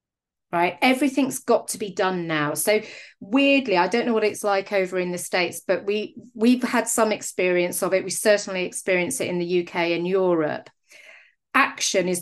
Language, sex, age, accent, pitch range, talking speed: English, female, 30-49, British, 175-230 Hz, 185 wpm